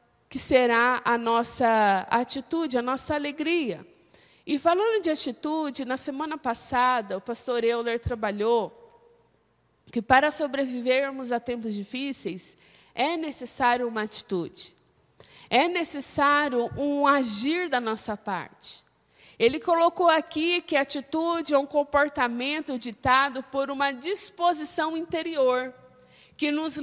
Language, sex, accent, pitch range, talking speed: Portuguese, female, Brazilian, 255-330 Hz, 115 wpm